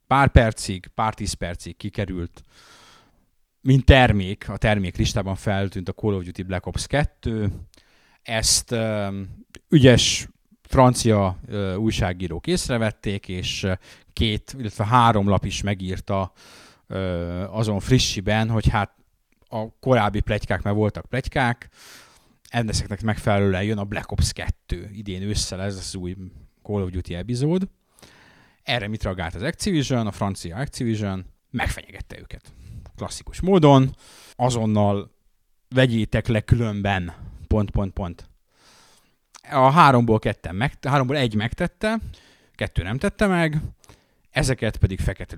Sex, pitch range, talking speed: male, 95-115 Hz, 125 wpm